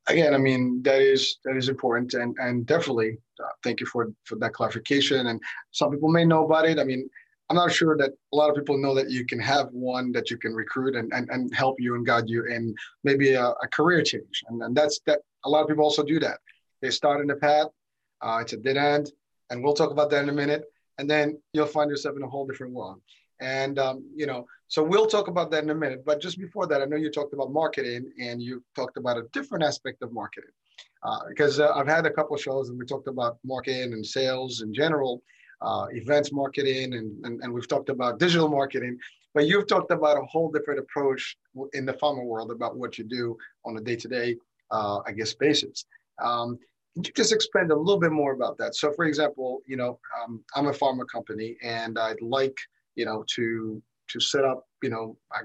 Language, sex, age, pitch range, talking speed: English, male, 30-49, 120-150 Hz, 235 wpm